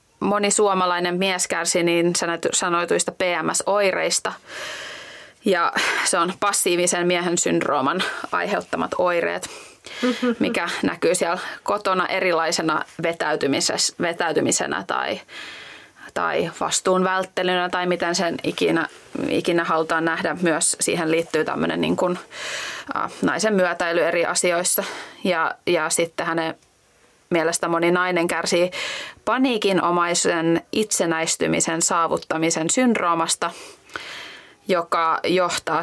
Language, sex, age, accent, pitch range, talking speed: Finnish, female, 20-39, native, 165-195 Hz, 95 wpm